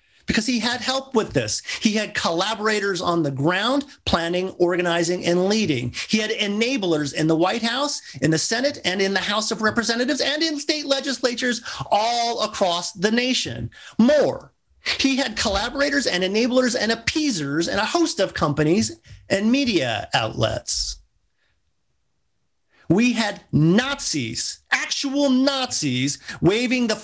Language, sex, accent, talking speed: English, male, American, 140 wpm